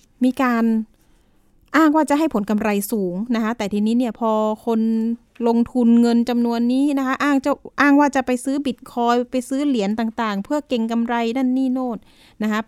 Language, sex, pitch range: Thai, female, 215-260 Hz